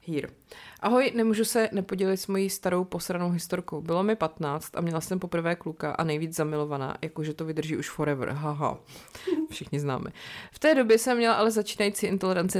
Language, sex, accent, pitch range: Czech, female, native, 170-210 Hz